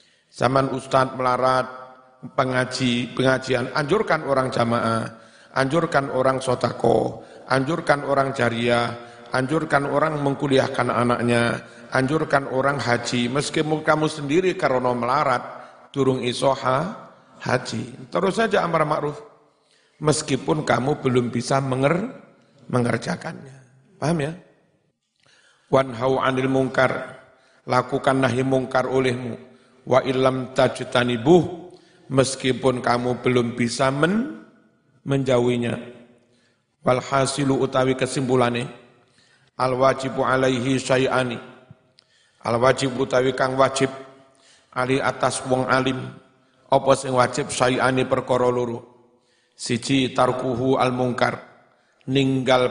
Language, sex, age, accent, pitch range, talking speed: Indonesian, male, 50-69, native, 125-135 Hz, 95 wpm